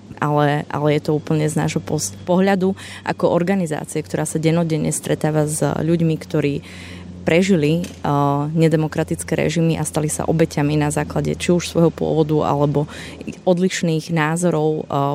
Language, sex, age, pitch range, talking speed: Slovak, female, 20-39, 155-170 Hz, 140 wpm